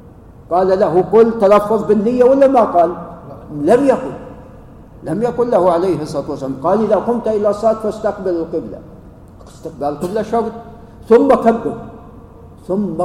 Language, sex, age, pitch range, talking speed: Arabic, male, 50-69, 155-225 Hz, 135 wpm